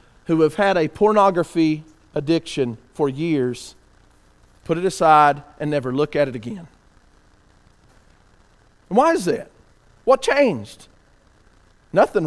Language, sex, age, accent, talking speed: English, male, 40-59, American, 110 wpm